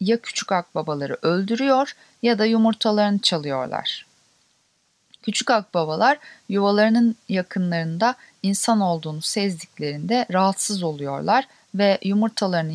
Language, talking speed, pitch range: Turkish, 90 wpm, 165-220 Hz